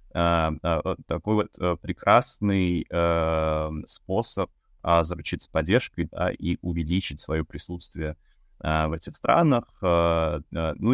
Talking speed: 80 wpm